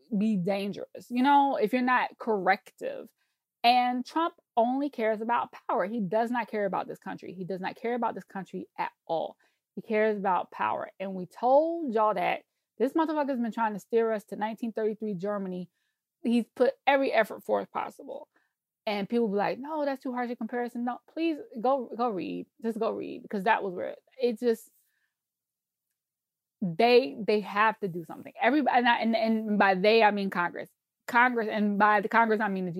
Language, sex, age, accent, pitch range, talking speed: English, female, 20-39, American, 210-270 Hz, 190 wpm